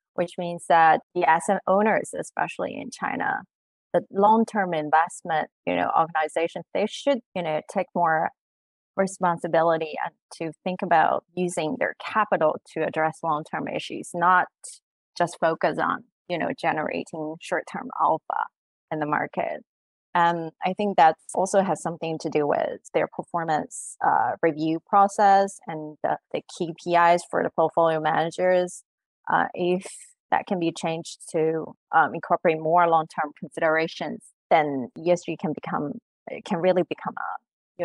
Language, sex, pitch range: Chinese, female, 160-195 Hz